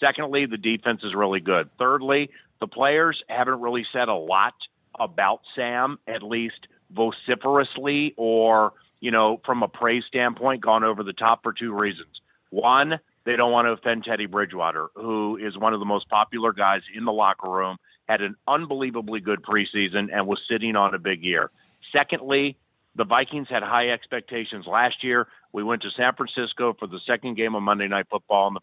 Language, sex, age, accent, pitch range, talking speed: English, male, 40-59, American, 105-130 Hz, 185 wpm